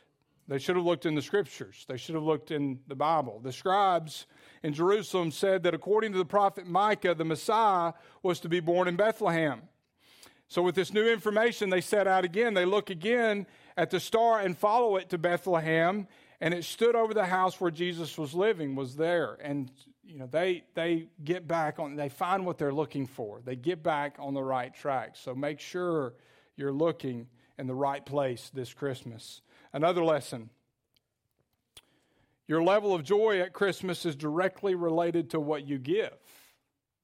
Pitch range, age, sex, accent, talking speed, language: 140-180 Hz, 50-69, male, American, 180 wpm, English